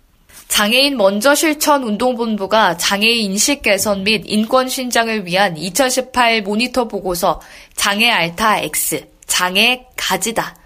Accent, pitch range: native, 185-240 Hz